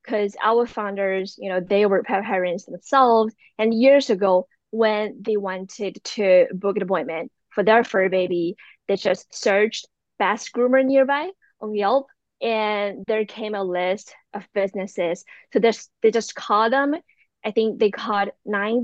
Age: 20-39